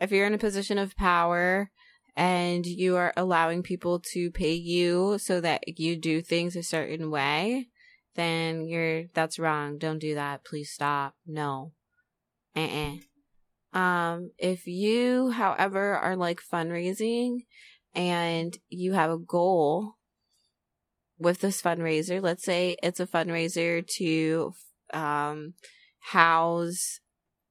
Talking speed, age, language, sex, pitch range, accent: 125 wpm, 20-39, English, female, 155-185 Hz, American